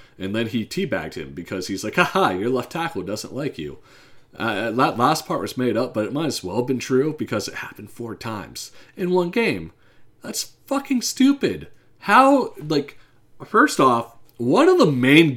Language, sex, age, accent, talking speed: English, male, 30-49, American, 190 wpm